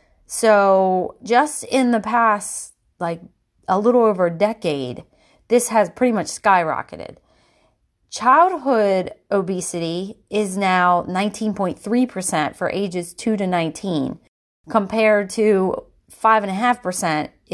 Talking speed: 100 wpm